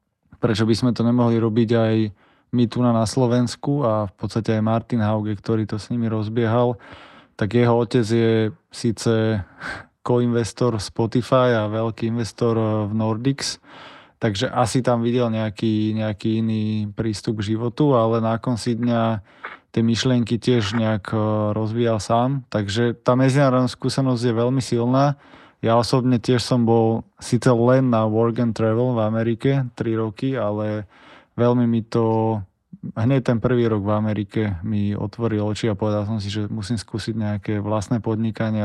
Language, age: Slovak, 20-39